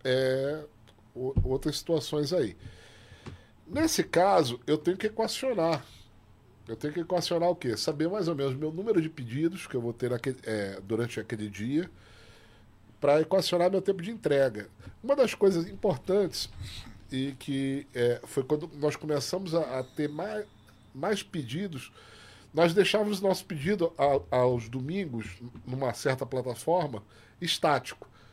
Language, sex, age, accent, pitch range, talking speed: Portuguese, male, 40-59, Brazilian, 115-180 Hz, 140 wpm